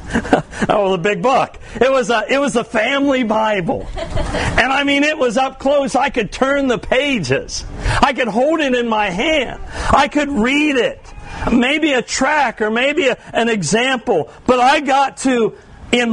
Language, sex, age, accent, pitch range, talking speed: English, male, 50-69, American, 220-280 Hz, 165 wpm